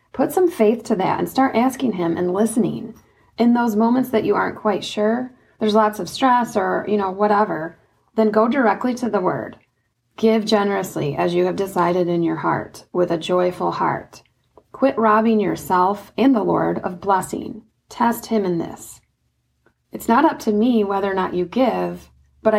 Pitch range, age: 180-225 Hz, 30-49